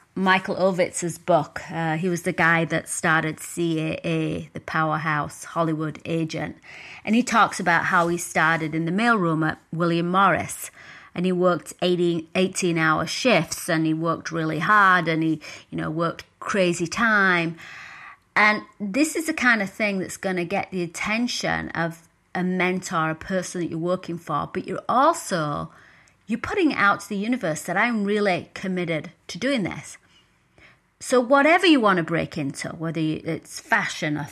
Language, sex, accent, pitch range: English, female, British, 160-210 Hz